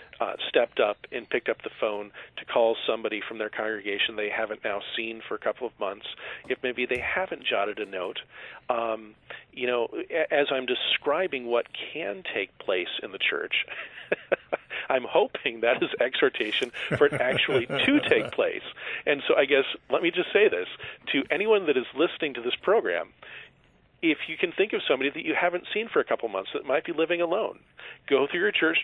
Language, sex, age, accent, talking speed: English, male, 40-59, American, 195 wpm